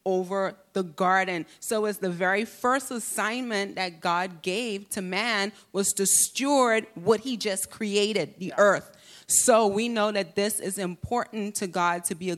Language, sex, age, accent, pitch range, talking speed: English, female, 30-49, American, 185-215 Hz, 170 wpm